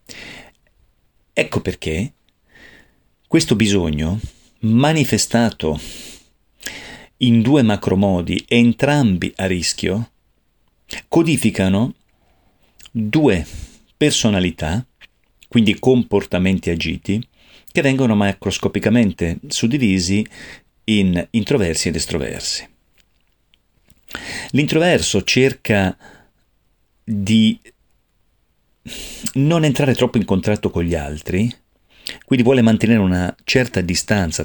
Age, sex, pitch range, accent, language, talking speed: 40-59, male, 85-120 Hz, native, Italian, 75 wpm